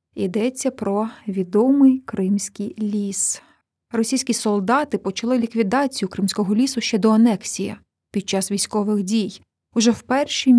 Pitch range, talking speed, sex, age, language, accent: 205-255 Hz, 120 wpm, female, 30-49, Ukrainian, native